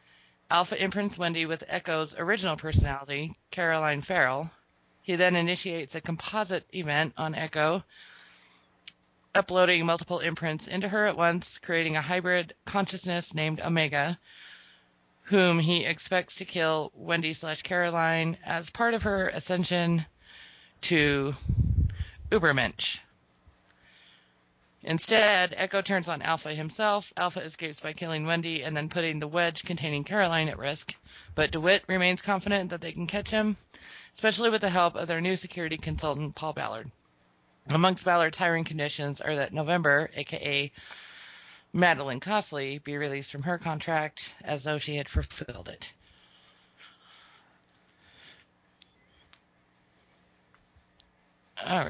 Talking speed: 125 wpm